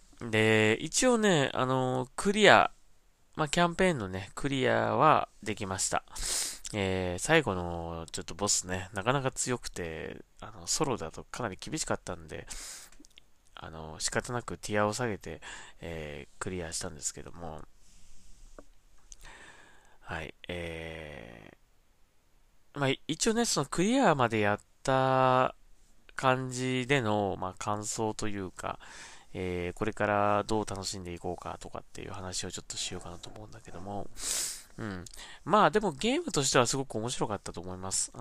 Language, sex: Japanese, male